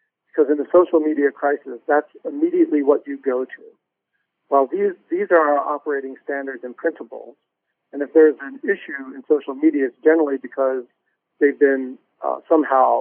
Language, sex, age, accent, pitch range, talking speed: English, male, 50-69, American, 135-165 Hz, 165 wpm